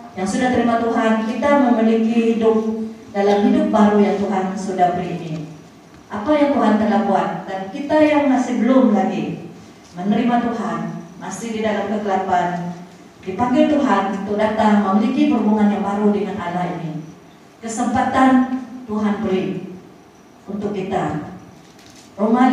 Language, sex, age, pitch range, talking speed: Malay, female, 40-59, 195-240 Hz, 130 wpm